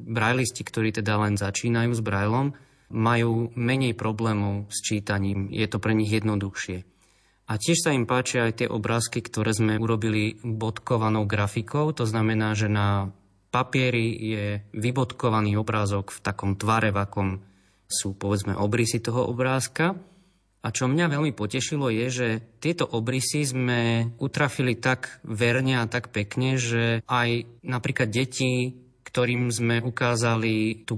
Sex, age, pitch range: male, 20-39, 105-125 Hz